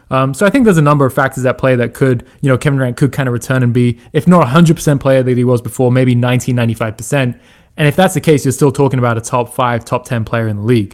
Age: 20-39